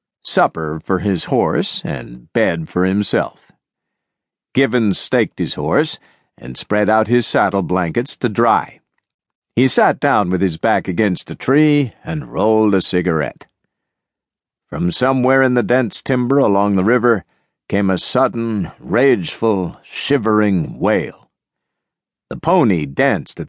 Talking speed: 135 wpm